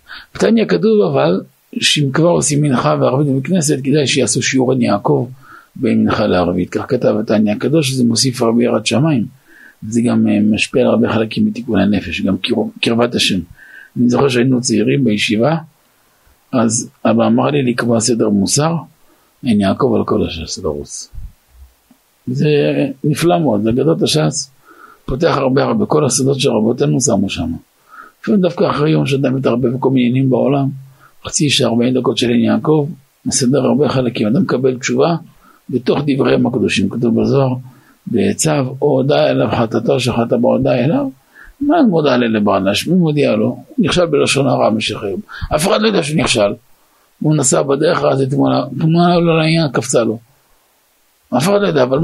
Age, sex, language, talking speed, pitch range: 50-69, male, Hebrew, 160 wpm, 115-150 Hz